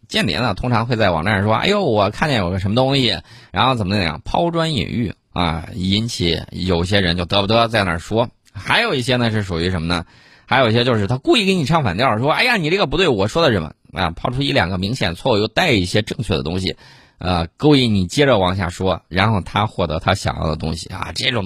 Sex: male